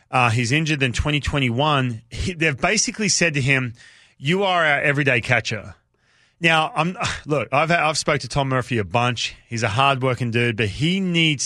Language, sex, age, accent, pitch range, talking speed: English, male, 30-49, Australian, 130-160 Hz, 185 wpm